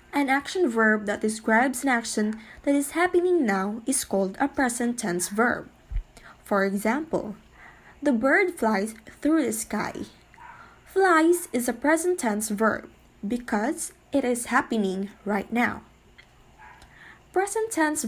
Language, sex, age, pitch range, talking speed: English, female, 20-39, 210-315 Hz, 130 wpm